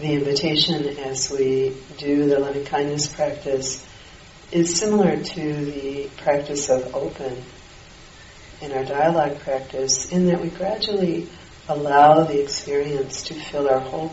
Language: English